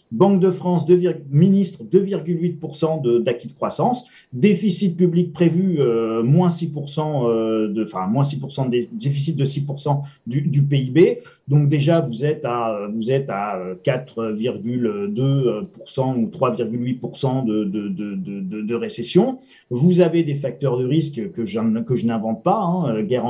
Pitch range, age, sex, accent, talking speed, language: 130-170 Hz, 40-59, male, French, 145 wpm, French